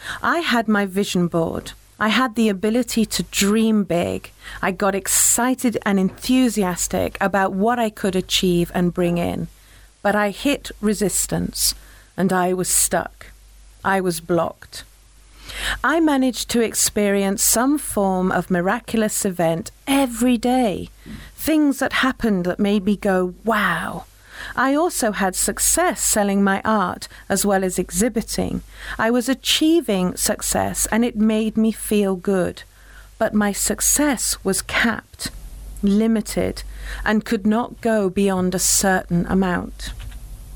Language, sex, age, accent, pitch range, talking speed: English, female, 40-59, British, 190-230 Hz, 135 wpm